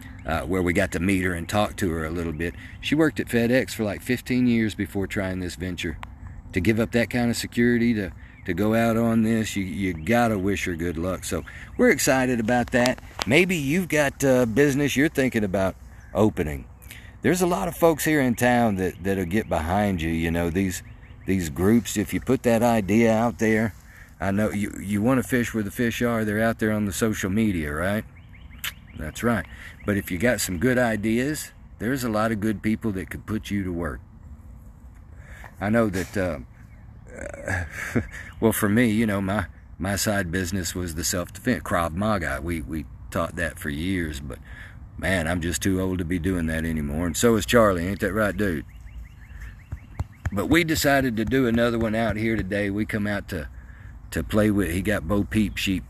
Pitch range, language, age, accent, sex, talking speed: 90-115 Hz, English, 50-69, American, male, 205 wpm